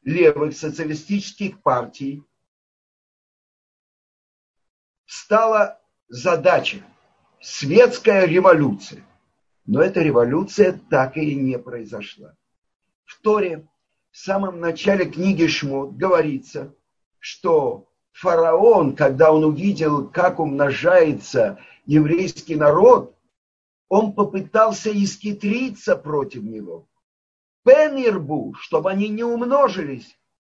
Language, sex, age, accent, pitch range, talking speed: Russian, male, 50-69, native, 150-200 Hz, 80 wpm